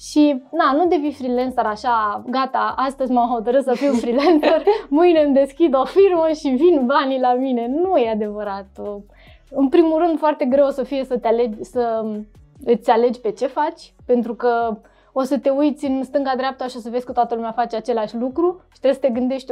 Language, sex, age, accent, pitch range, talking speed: Romanian, female, 20-39, native, 235-290 Hz, 205 wpm